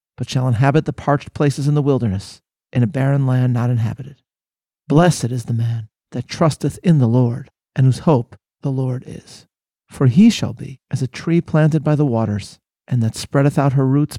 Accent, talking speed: American, 200 wpm